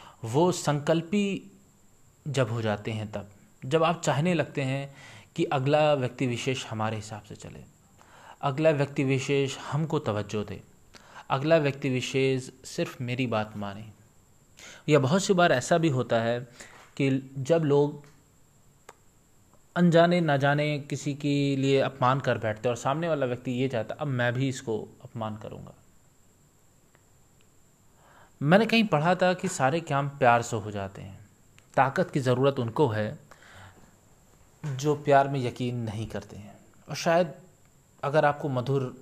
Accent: native